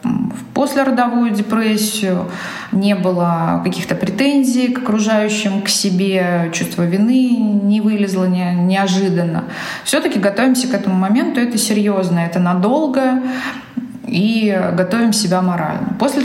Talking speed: 110 wpm